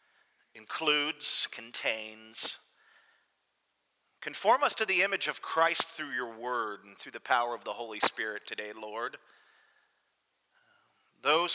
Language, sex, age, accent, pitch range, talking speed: English, male, 40-59, American, 120-195 Hz, 120 wpm